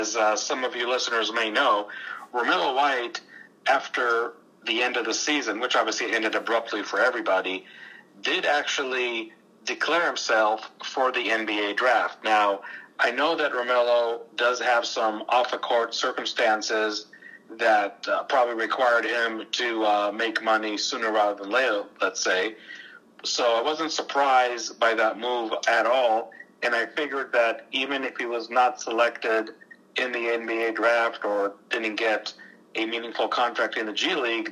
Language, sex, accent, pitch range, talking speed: English, male, American, 110-120 Hz, 155 wpm